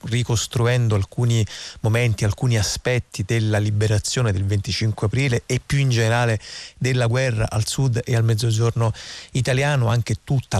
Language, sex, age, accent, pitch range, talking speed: Italian, male, 40-59, native, 110-120 Hz, 135 wpm